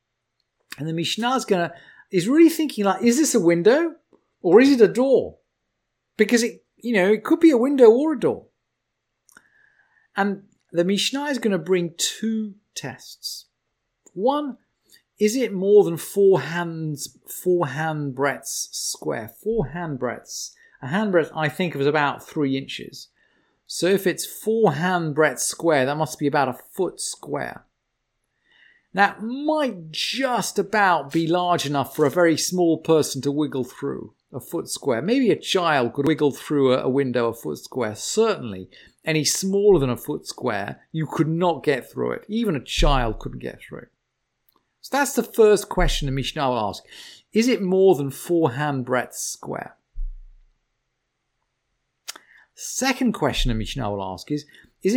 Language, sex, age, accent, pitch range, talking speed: English, male, 40-59, British, 145-220 Hz, 165 wpm